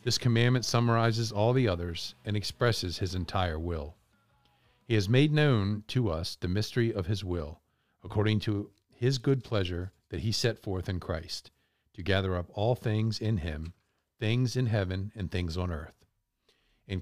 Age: 50-69